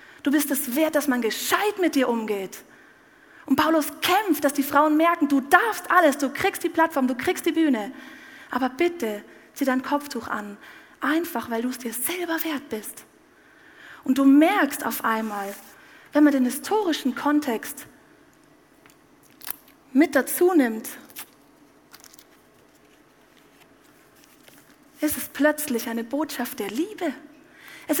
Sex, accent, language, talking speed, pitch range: female, German, German, 135 wpm, 255-315 Hz